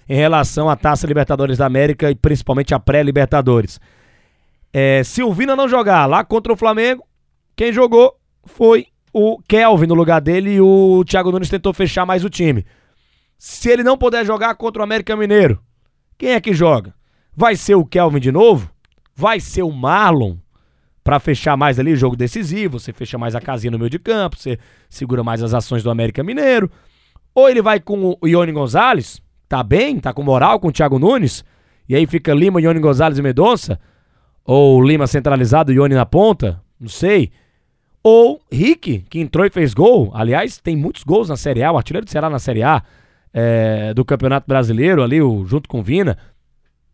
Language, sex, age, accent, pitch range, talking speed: Portuguese, male, 20-39, Brazilian, 130-195 Hz, 190 wpm